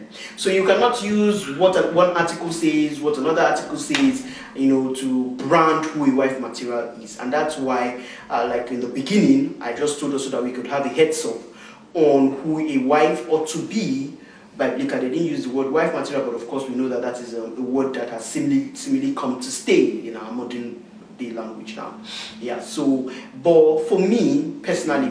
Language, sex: English, male